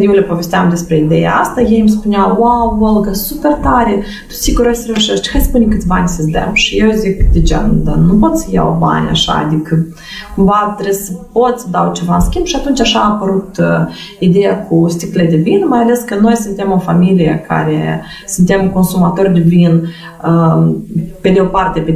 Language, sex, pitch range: Romanian, female, 170-225 Hz